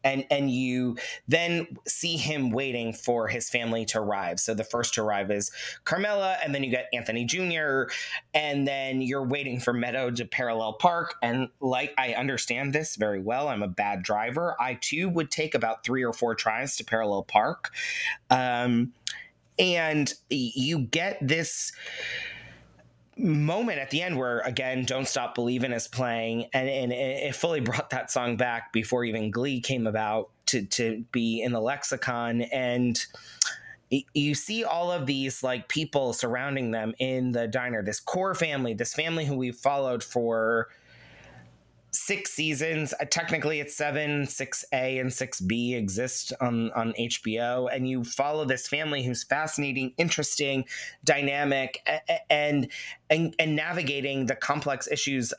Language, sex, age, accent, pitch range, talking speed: English, male, 20-39, American, 115-145 Hz, 160 wpm